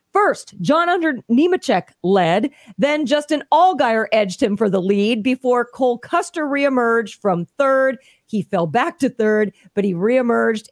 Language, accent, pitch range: English, American, 200-265 Hz